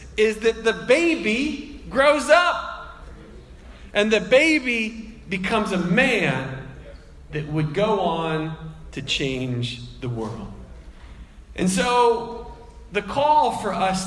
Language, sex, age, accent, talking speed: English, male, 40-59, American, 110 wpm